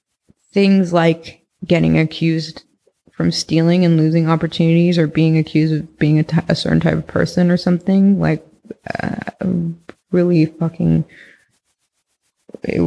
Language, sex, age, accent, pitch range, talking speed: English, female, 20-39, American, 160-180 Hz, 130 wpm